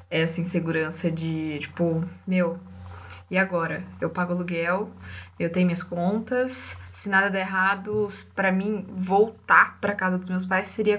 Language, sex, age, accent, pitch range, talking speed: Portuguese, female, 10-29, Brazilian, 175-215 Hz, 145 wpm